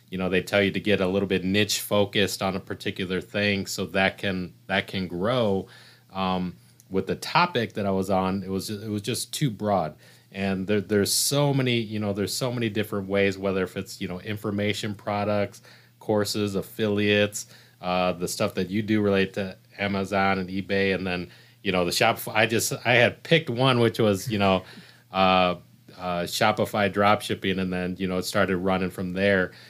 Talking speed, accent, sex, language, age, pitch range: 200 wpm, American, male, English, 30-49, 95-115 Hz